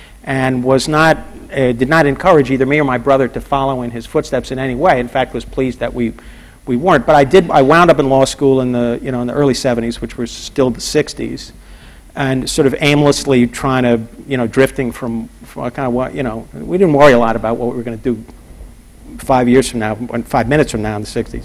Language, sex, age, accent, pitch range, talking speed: English, male, 50-69, American, 125-150 Hz, 245 wpm